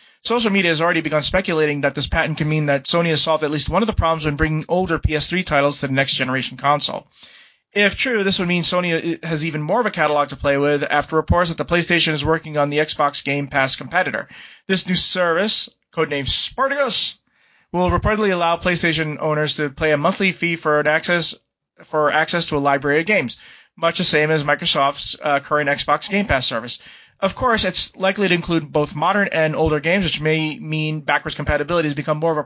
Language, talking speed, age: English, 210 wpm, 30-49